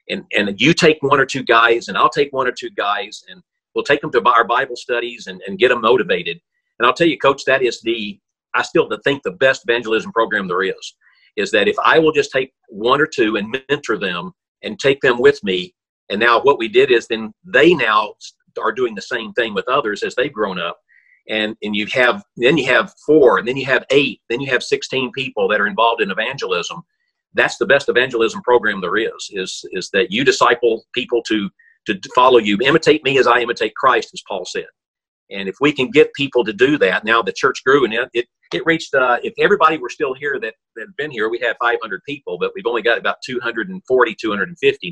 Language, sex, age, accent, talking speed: English, male, 40-59, American, 230 wpm